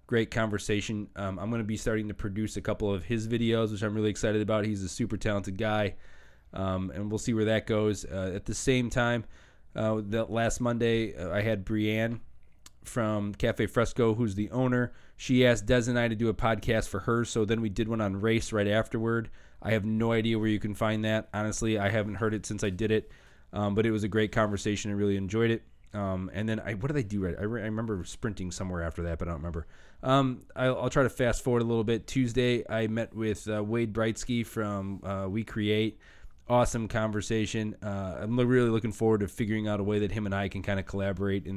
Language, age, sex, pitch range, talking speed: English, 20-39, male, 100-115 Hz, 235 wpm